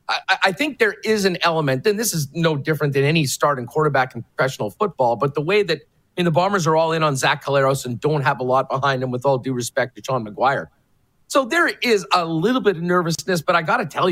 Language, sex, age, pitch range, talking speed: English, male, 40-59, 140-180 Hz, 245 wpm